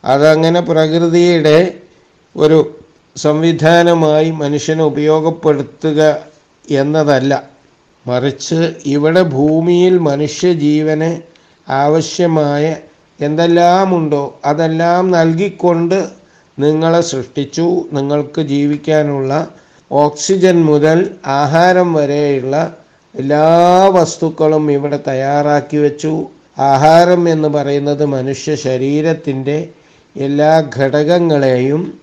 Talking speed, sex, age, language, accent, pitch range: 65 wpm, male, 60-79, Malayalam, native, 140-165 Hz